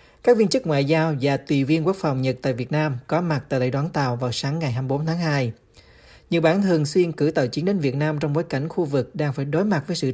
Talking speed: 280 wpm